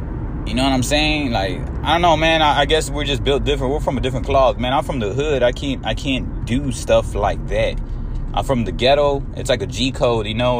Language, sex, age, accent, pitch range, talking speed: English, male, 20-39, American, 110-135 Hz, 255 wpm